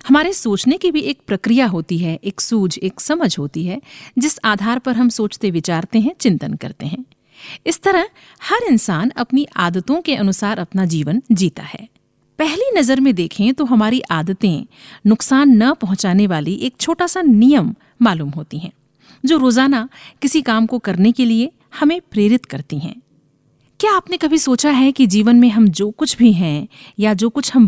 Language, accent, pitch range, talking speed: Hindi, native, 190-270 Hz, 180 wpm